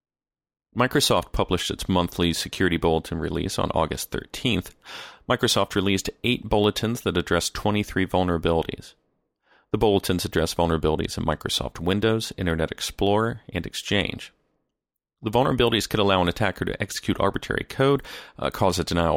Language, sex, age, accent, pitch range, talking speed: English, male, 40-59, American, 85-110 Hz, 135 wpm